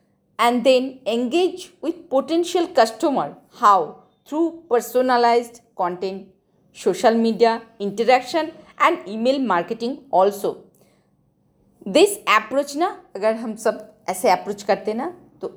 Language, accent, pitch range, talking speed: Hindi, native, 190-255 Hz, 110 wpm